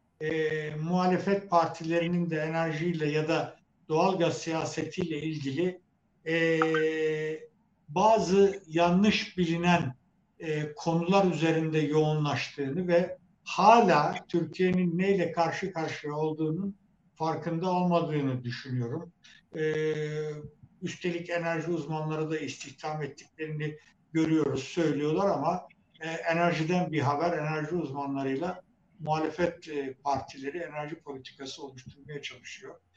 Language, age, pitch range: Turkish, 60-79, 150-180 Hz